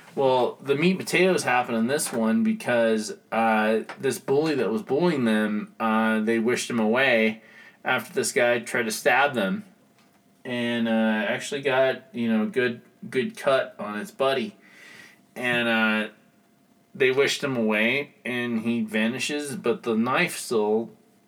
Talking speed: 150 wpm